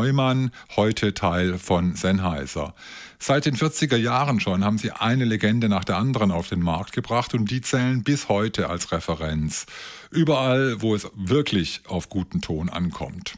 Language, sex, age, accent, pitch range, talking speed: German, male, 50-69, German, 95-125 Hz, 160 wpm